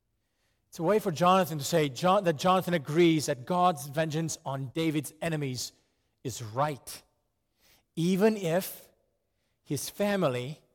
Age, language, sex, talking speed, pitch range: 40-59, English, male, 125 wpm, 120-180 Hz